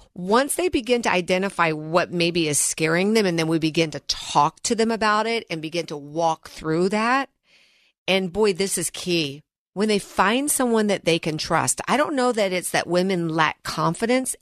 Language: English